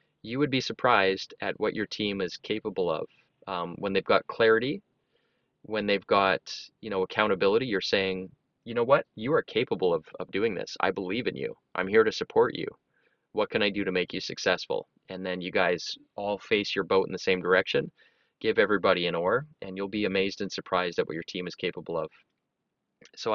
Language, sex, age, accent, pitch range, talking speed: English, male, 20-39, American, 90-110 Hz, 210 wpm